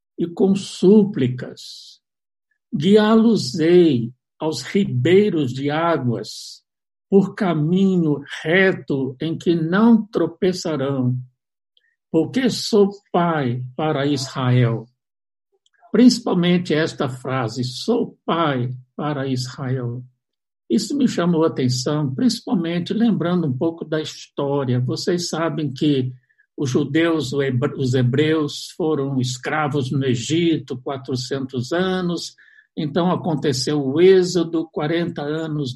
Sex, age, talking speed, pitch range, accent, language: male, 60-79, 95 wpm, 130-175 Hz, Brazilian, Portuguese